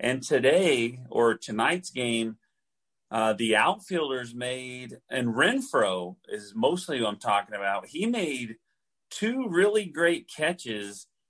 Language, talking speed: English, 120 wpm